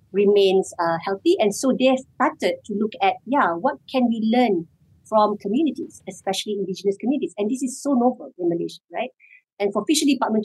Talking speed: 185 wpm